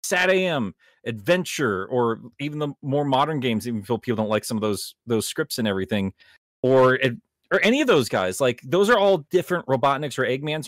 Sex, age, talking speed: male, 30-49, 195 wpm